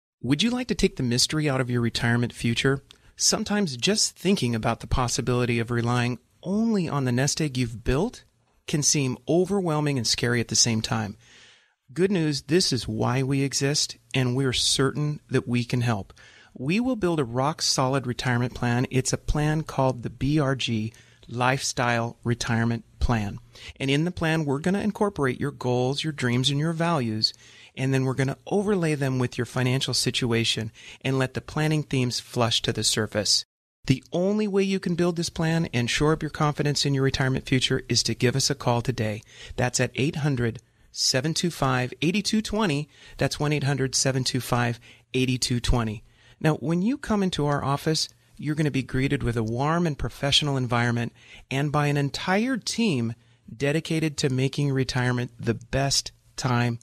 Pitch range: 120-150 Hz